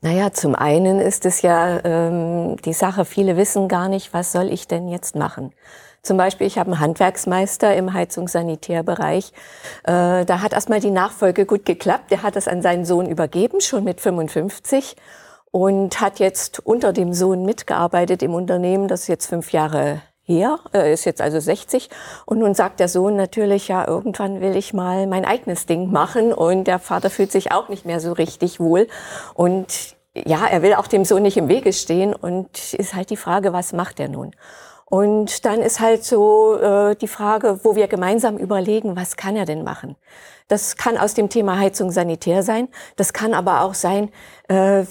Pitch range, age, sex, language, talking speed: 180-210 Hz, 50-69, female, German, 185 wpm